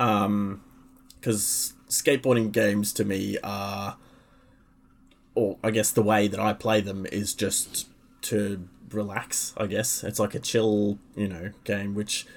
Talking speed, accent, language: 145 wpm, Australian, English